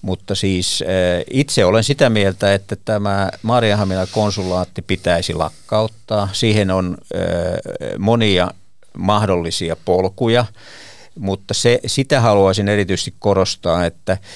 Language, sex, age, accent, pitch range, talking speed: Finnish, male, 50-69, native, 85-105 Hz, 95 wpm